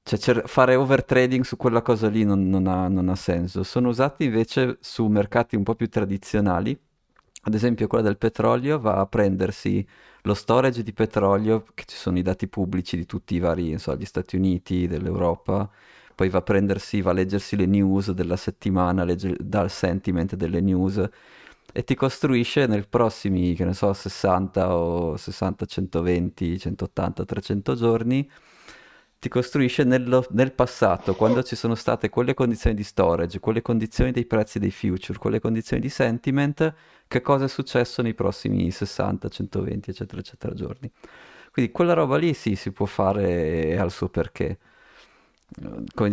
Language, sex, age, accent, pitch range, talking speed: Italian, male, 30-49, native, 95-120 Hz, 165 wpm